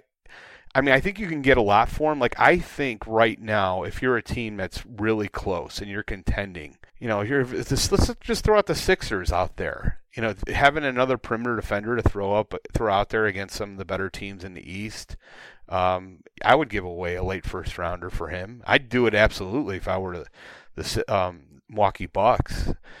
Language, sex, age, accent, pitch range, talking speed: English, male, 30-49, American, 90-115 Hz, 210 wpm